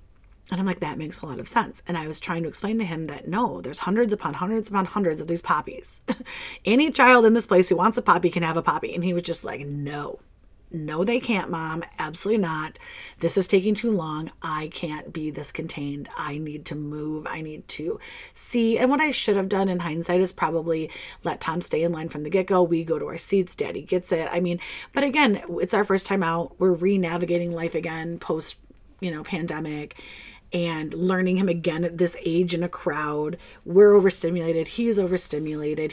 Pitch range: 160-195 Hz